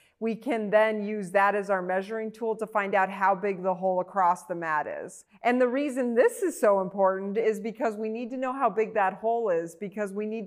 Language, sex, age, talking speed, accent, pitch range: English, female, 40-59, 235 wpm, American, 180-215 Hz